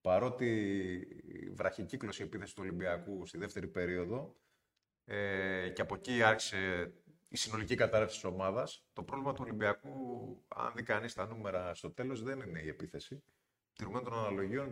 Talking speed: 150 wpm